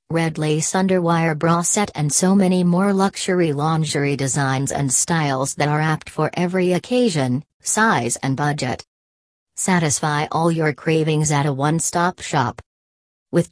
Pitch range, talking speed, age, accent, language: 145-175 Hz, 145 wpm, 40-59, American, English